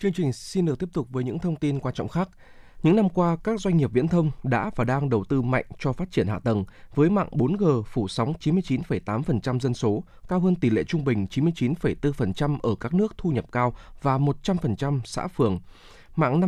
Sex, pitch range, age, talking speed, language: male, 120-165 Hz, 20-39, 210 wpm, Vietnamese